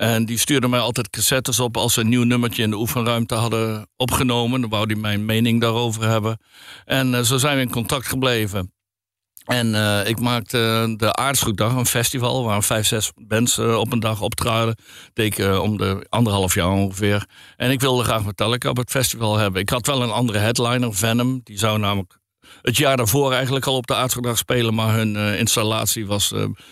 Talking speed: 200 wpm